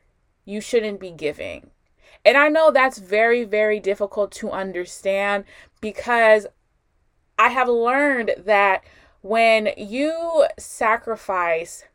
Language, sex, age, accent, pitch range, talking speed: English, female, 20-39, American, 195-240 Hz, 105 wpm